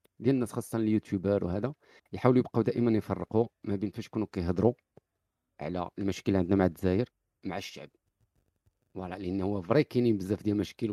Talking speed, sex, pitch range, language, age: 160 wpm, male, 95-120 Hz, Arabic, 40-59